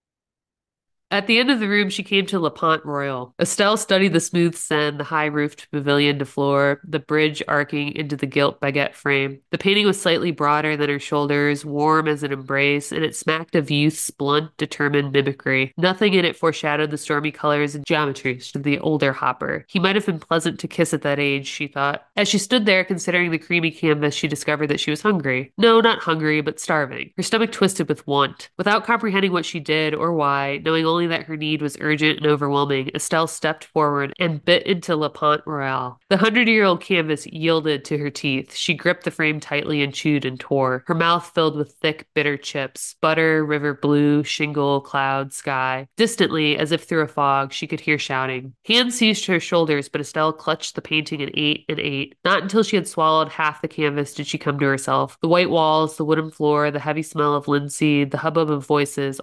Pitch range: 145-165 Hz